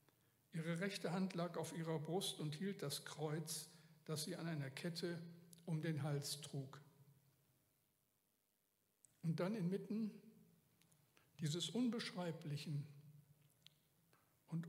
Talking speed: 105 wpm